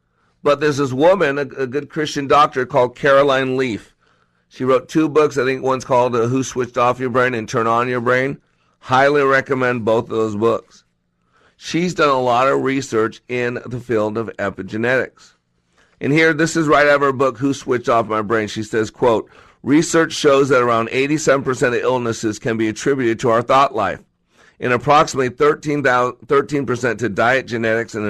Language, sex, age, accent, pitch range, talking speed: English, male, 50-69, American, 110-135 Hz, 180 wpm